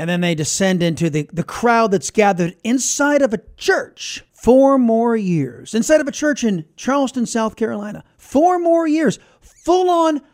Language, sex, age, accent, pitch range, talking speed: English, male, 40-59, American, 175-270 Hz, 175 wpm